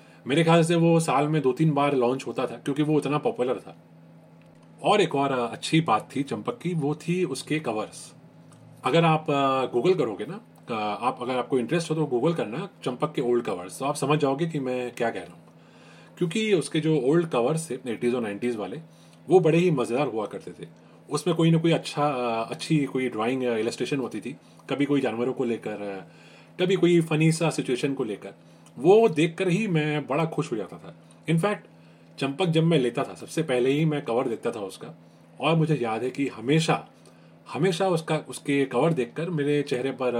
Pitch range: 100-155 Hz